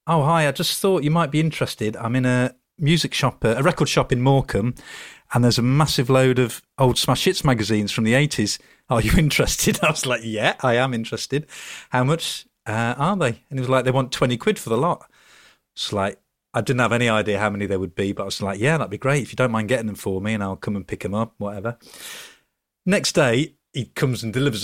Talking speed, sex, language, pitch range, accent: 245 wpm, male, English, 105-140 Hz, British